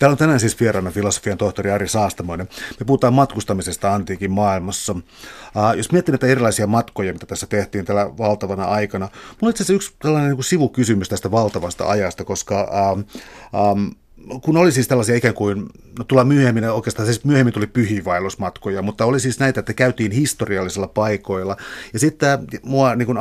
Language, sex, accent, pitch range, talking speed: Finnish, male, native, 100-125 Hz, 165 wpm